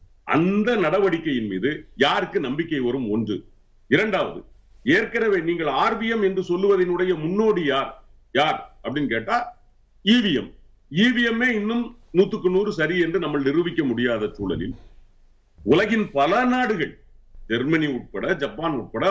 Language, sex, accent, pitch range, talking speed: Tamil, male, native, 145-205 Hz, 55 wpm